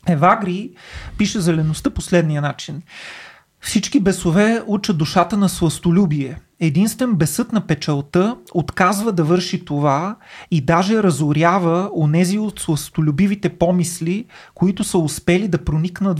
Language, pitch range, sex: Bulgarian, 155-195 Hz, male